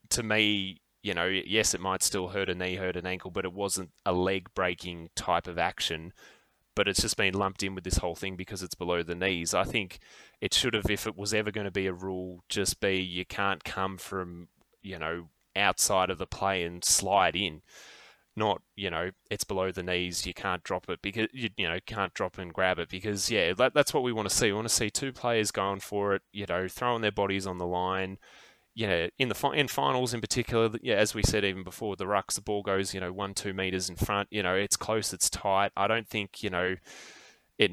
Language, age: English, 10-29